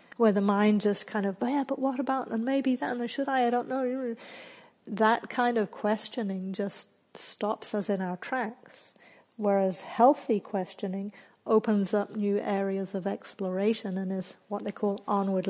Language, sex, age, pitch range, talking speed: English, female, 50-69, 195-225 Hz, 170 wpm